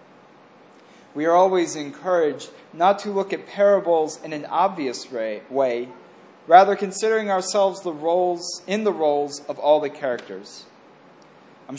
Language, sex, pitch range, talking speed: English, male, 150-195 Hz, 130 wpm